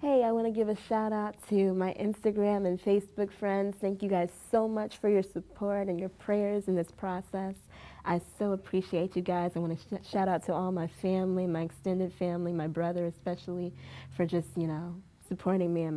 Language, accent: English, American